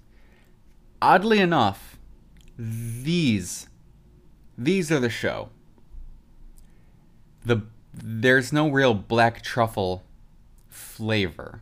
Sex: male